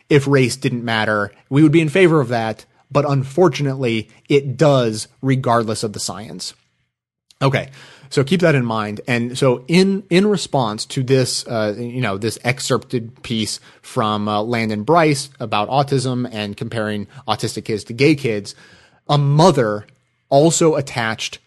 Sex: male